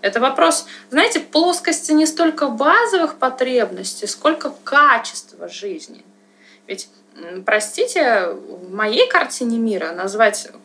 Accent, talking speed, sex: native, 100 wpm, female